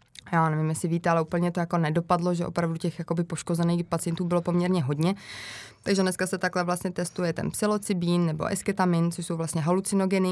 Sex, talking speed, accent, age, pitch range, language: female, 180 wpm, native, 20-39, 165-180 Hz, Czech